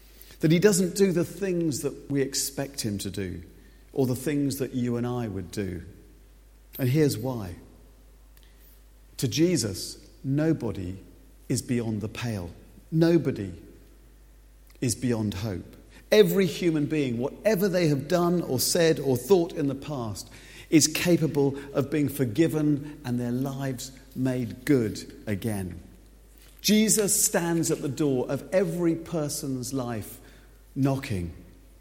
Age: 50-69